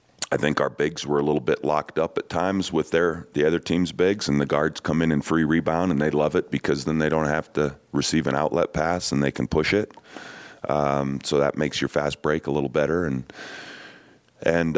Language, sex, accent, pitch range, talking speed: English, male, American, 65-75 Hz, 230 wpm